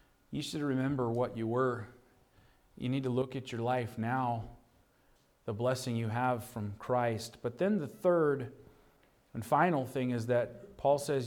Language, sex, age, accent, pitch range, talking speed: English, male, 40-59, American, 120-160 Hz, 165 wpm